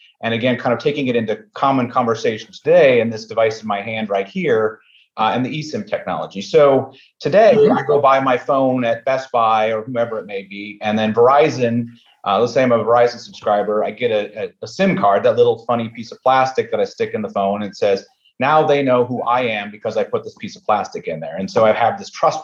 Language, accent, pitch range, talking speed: English, American, 115-155 Hz, 240 wpm